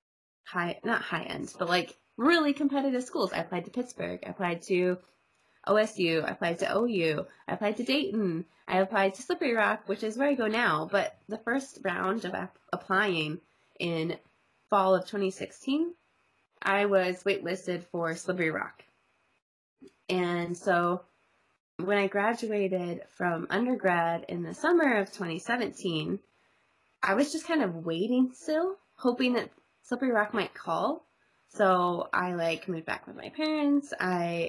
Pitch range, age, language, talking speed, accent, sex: 170-215 Hz, 20-39, English, 150 wpm, American, female